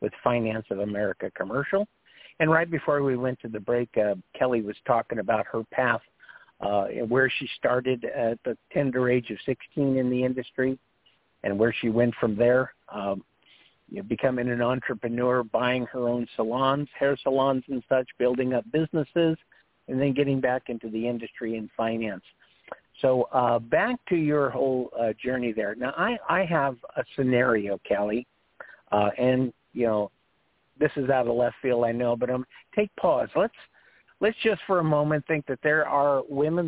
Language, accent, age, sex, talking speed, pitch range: English, American, 50-69, male, 175 wpm, 120-150 Hz